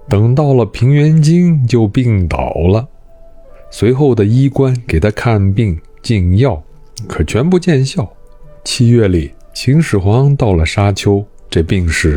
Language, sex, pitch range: Chinese, male, 85-130 Hz